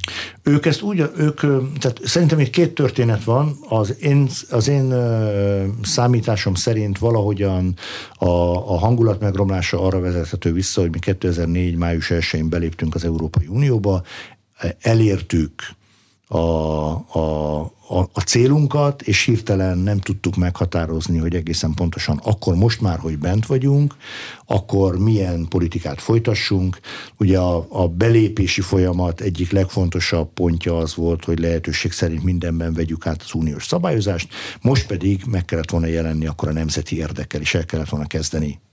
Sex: male